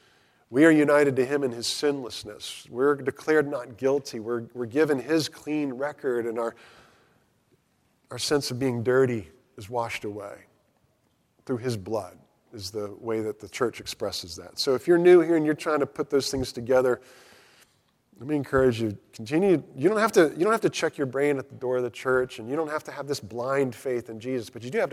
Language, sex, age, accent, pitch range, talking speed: English, male, 40-59, American, 115-150 Hz, 205 wpm